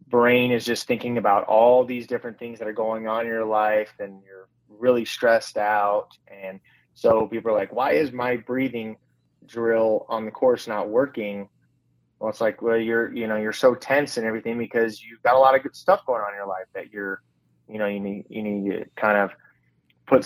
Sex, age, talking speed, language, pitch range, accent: male, 20-39, 215 wpm, English, 105-120 Hz, American